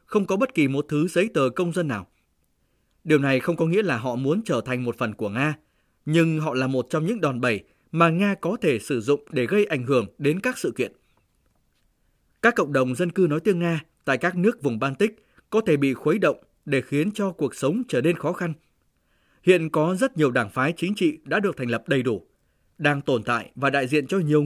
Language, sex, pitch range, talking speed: Vietnamese, male, 135-190 Hz, 235 wpm